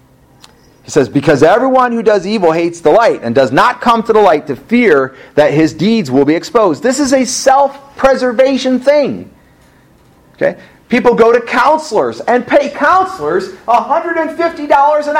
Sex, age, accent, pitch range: male, 40-59, American, 200-300 Hz